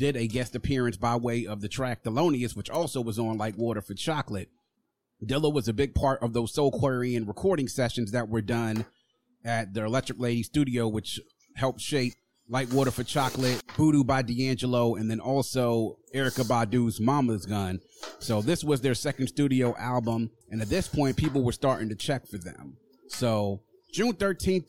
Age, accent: 30-49, American